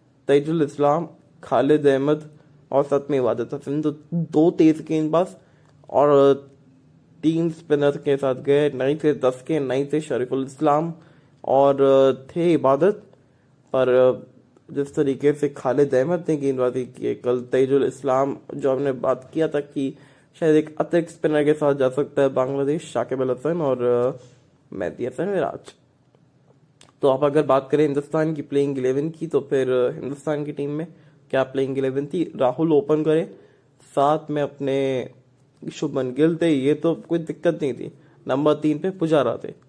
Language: English